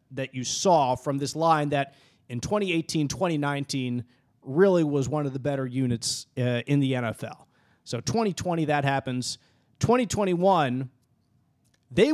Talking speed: 135 wpm